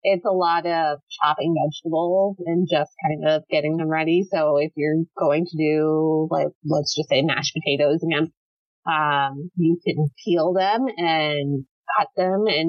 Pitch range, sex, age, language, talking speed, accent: 145-190 Hz, female, 30-49, English, 165 wpm, American